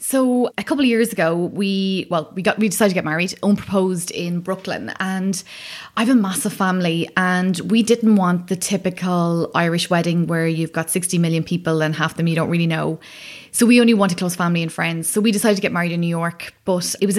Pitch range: 170-200 Hz